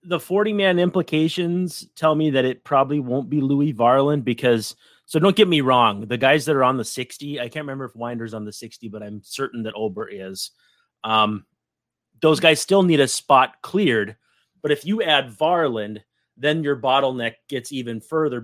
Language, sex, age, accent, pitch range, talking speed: English, male, 30-49, American, 115-155 Hz, 190 wpm